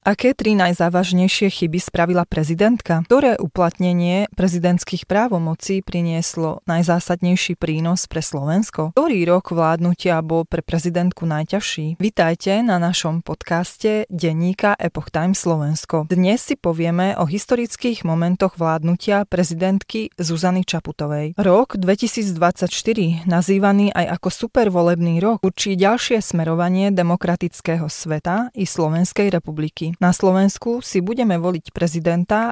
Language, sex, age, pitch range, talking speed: Slovak, female, 20-39, 170-200 Hz, 115 wpm